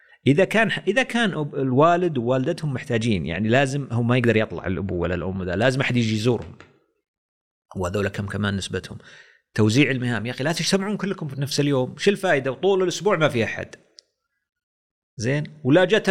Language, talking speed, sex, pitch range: Arabic, 170 wpm, male, 115-165 Hz